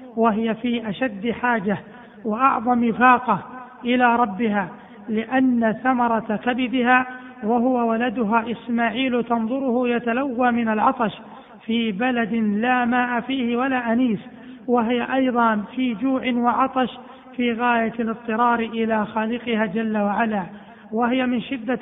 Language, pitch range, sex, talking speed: Arabic, 225-250 Hz, male, 110 wpm